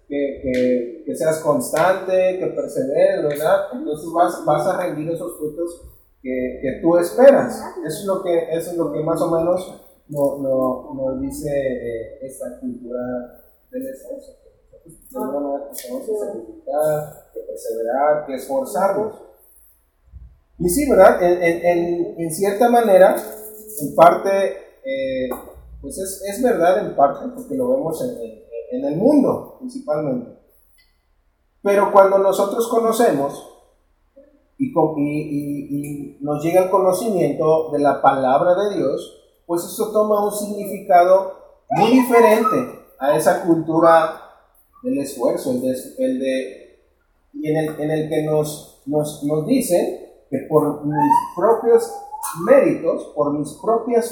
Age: 30-49